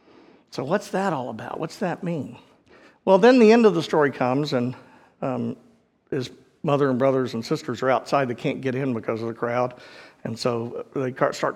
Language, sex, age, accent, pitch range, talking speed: English, male, 50-69, American, 125-195 Hz, 195 wpm